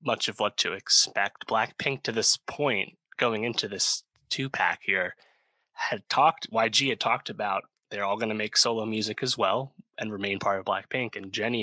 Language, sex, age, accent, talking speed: English, male, 20-39, American, 185 wpm